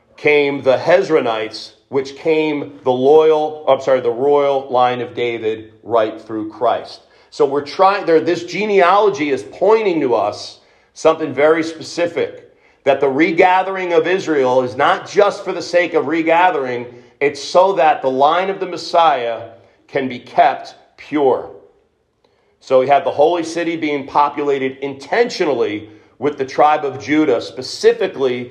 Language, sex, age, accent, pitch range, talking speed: English, male, 40-59, American, 130-195 Hz, 150 wpm